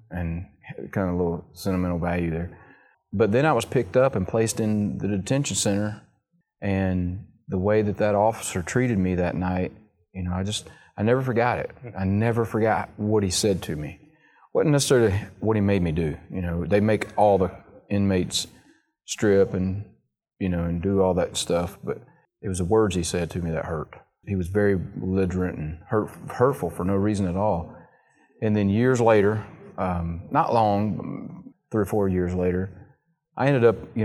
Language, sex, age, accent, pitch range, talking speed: English, male, 30-49, American, 90-110 Hz, 190 wpm